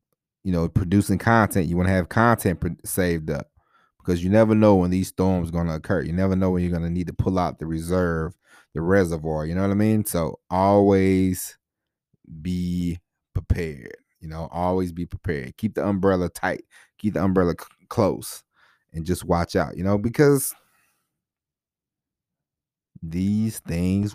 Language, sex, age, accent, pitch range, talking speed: English, male, 30-49, American, 90-115 Hz, 170 wpm